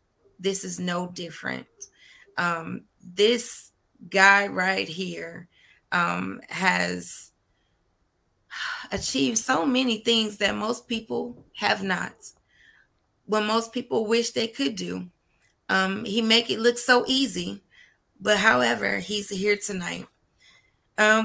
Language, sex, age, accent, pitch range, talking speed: English, female, 30-49, American, 160-225 Hz, 115 wpm